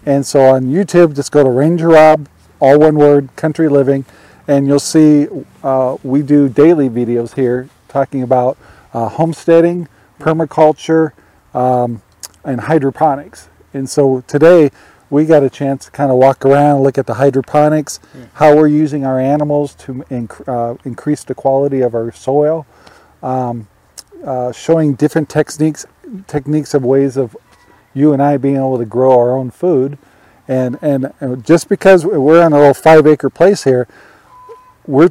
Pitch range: 130-155 Hz